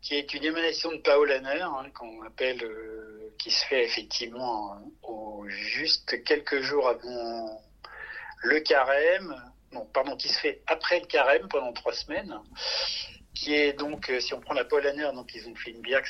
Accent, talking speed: French, 185 wpm